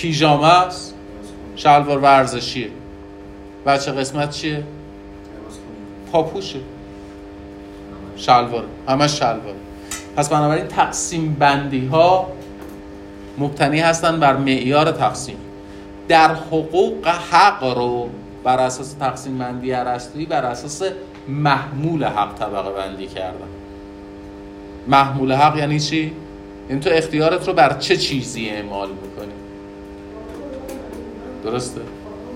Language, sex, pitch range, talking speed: Persian, male, 100-155 Hz, 95 wpm